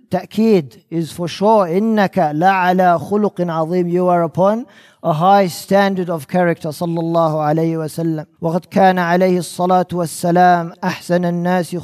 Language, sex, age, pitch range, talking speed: English, male, 40-59, 170-195 Hz, 140 wpm